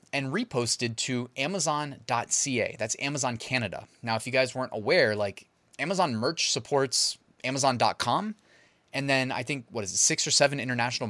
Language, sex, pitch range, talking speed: English, male, 115-160 Hz, 155 wpm